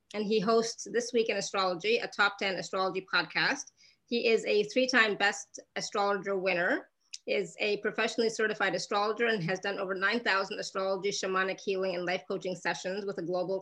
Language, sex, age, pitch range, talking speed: English, female, 30-49, 185-215 Hz, 170 wpm